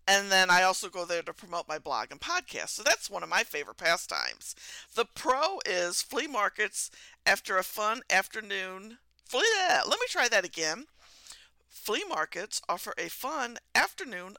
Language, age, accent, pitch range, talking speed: English, 50-69, American, 185-285 Hz, 165 wpm